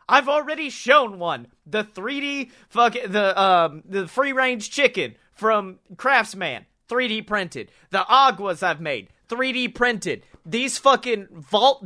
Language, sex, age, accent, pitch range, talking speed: English, male, 30-49, American, 150-235 Hz, 130 wpm